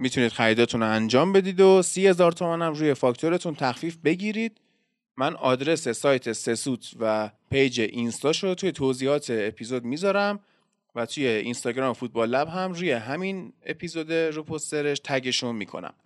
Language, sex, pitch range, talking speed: Persian, male, 120-170 Hz, 140 wpm